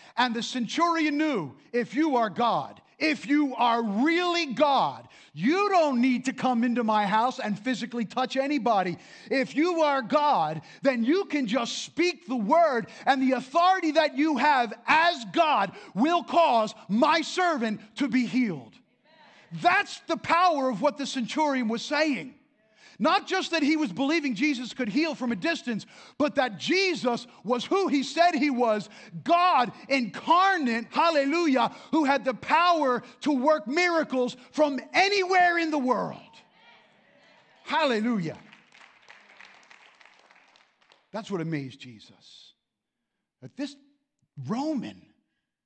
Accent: American